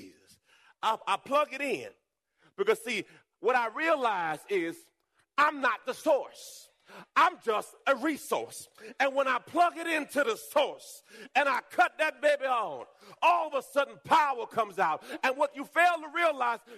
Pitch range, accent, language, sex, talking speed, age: 255-345 Hz, American, English, male, 165 wpm, 40-59